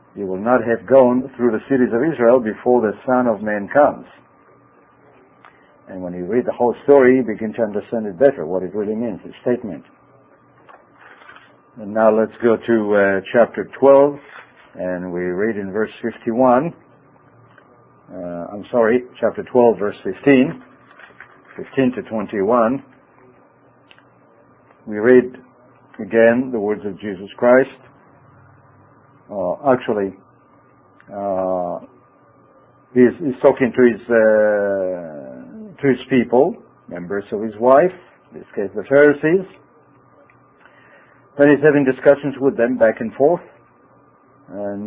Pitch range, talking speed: 105-135 Hz, 130 wpm